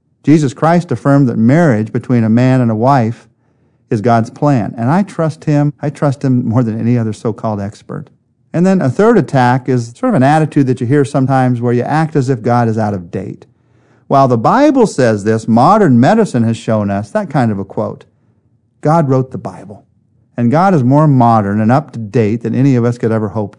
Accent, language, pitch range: American, English, 110-130 Hz